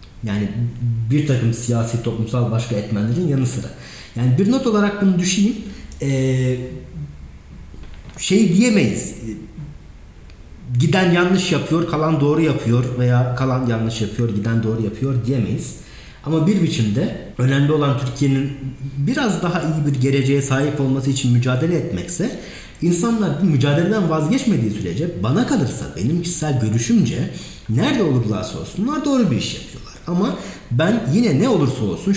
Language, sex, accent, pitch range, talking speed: Turkish, male, native, 120-170 Hz, 130 wpm